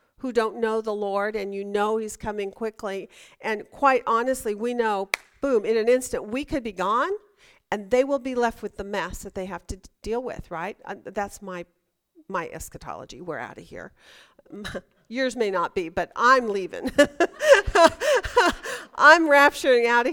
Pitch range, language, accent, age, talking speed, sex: 200-275 Hz, English, American, 50-69, 175 wpm, female